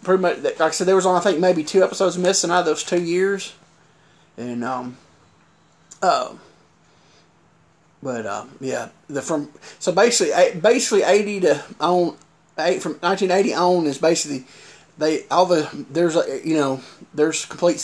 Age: 30-49